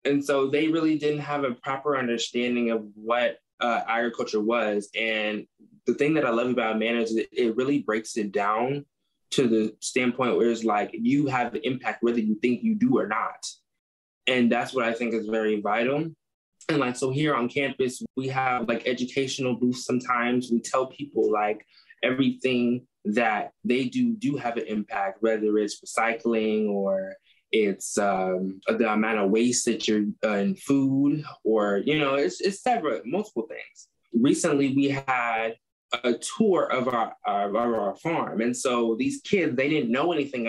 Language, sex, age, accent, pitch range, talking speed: English, male, 20-39, American, 115-145 Hz, 180 wpm